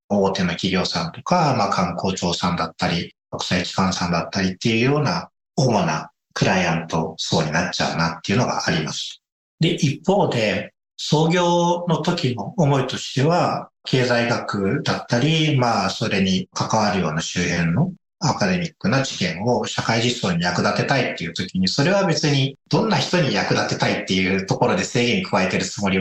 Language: Japanese